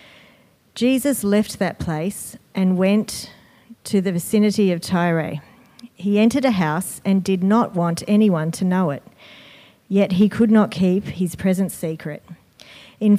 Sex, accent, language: female, Australian, English